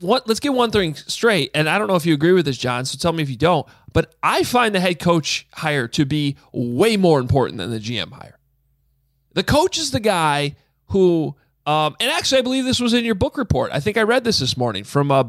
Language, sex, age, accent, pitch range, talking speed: English, male, 30-49, American, 135-195 Hz, 245 wpm